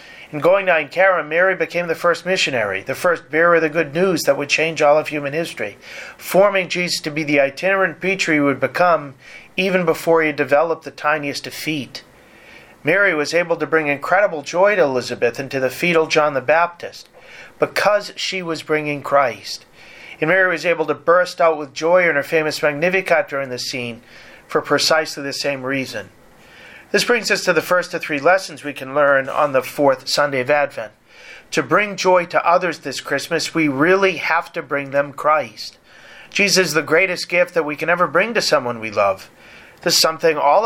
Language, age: English, 40-59